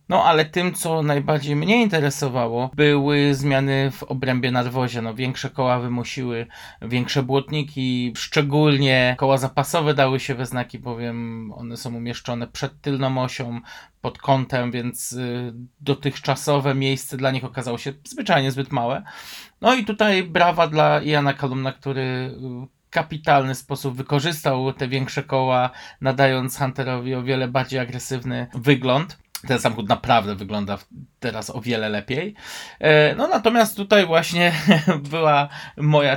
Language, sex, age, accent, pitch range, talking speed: Polish, male, 20-39, native, 120-145 Hz, 130 wpm